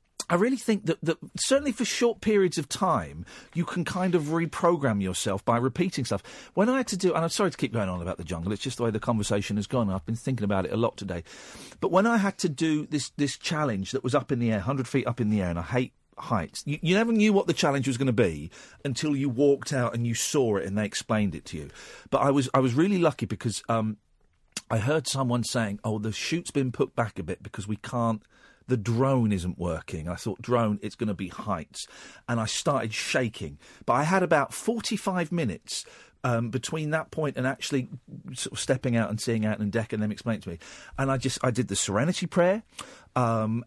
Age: 50-69